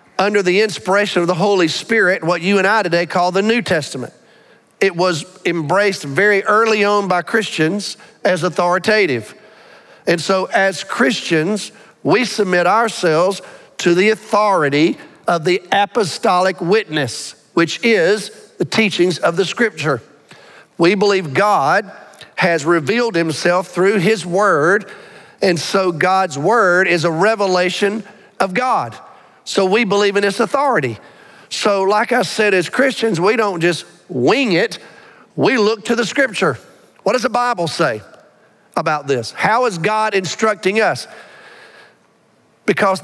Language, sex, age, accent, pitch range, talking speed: English, male, 50-69, American, 175-220 Hz, 140 wpm